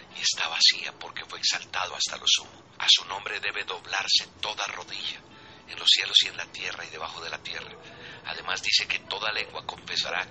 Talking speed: 200 wpm